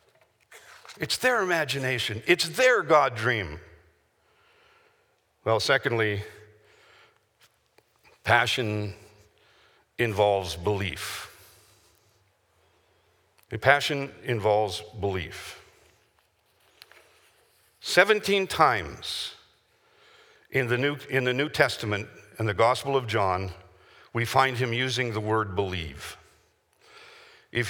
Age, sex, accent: 60-79, male, American